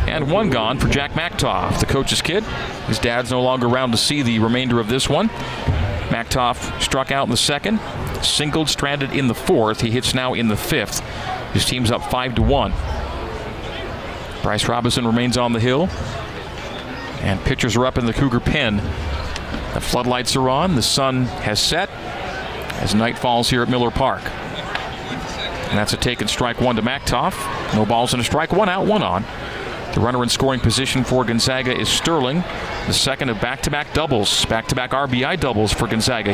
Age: 40-59